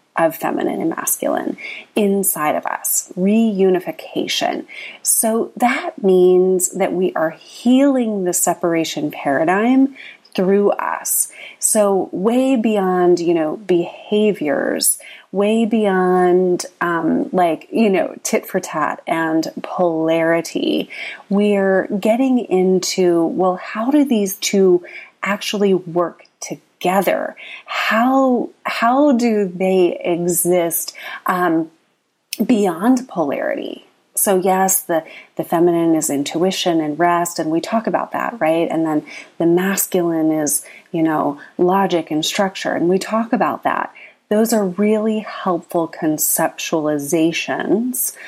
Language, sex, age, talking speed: English, female, 30-49, 115 wpm